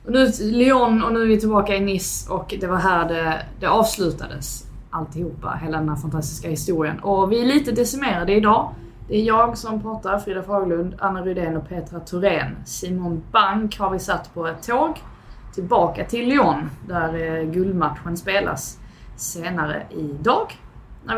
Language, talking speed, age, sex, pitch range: Swedish, 165 wpm, 20-39, female, 155-200 Hz